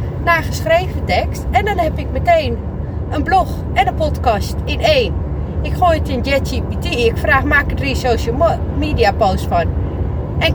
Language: Dutch